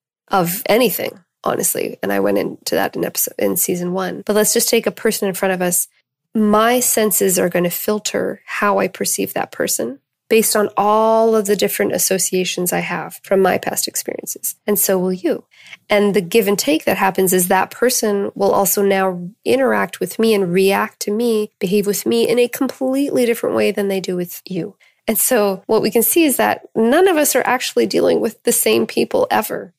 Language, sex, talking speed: English, female, 205 wpm